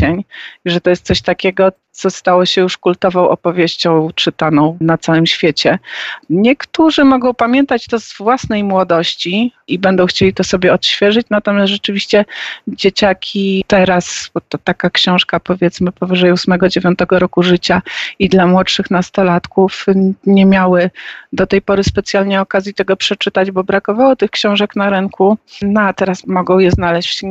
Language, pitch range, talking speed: Polish, 175-200 Hz, 145 wpm